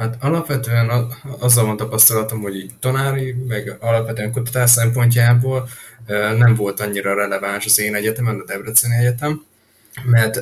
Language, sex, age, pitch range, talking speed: Hungarian, male, 20-39, 105-125 Hz, 125 wpm